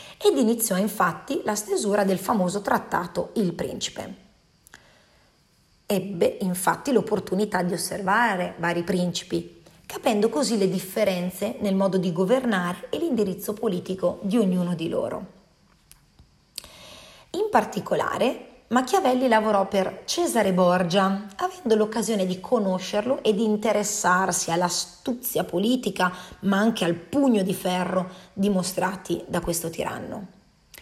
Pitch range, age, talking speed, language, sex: 185-235 Hz, 30-49, 115 wpm, Italian, female